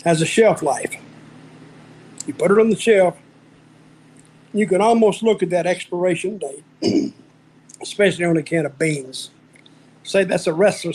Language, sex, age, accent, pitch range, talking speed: English, male, 50-69, American, 170-205 Hz, 155 wpm